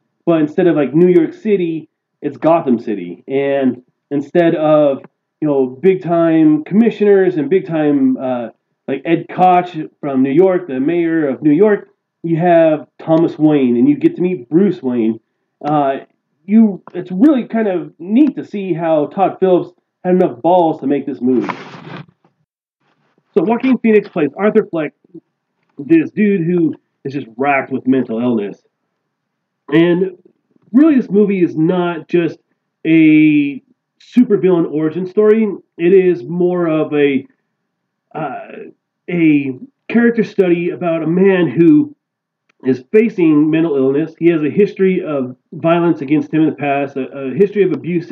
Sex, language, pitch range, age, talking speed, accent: male, English, 145-195 Hz, 30-49, 150 wpm, American